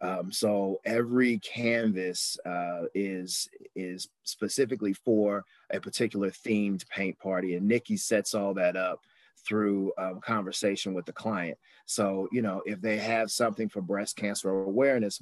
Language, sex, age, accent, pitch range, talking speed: English, male, 30-49, American, 95-110 Hz, 145 wpm